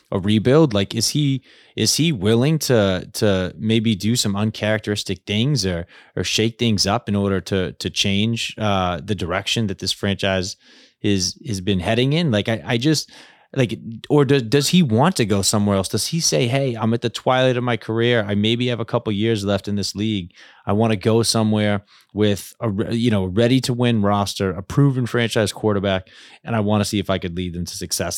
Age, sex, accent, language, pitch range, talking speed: 20-39, male, American, English, 100-125 Hz, 215 wpm